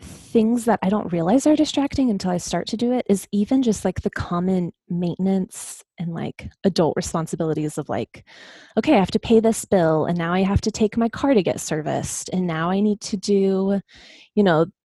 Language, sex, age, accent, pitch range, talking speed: English, female, 20-39, American, 175-215 Hz, 210 wpm